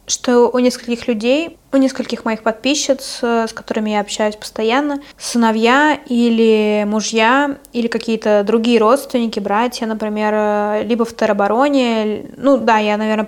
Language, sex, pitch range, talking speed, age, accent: Russian, female, 215-245 Hz, 130 wpm, 20-39, native